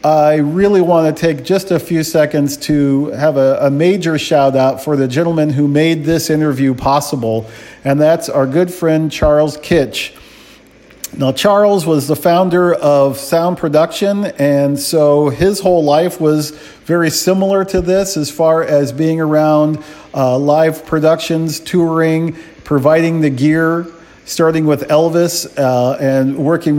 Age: 50-69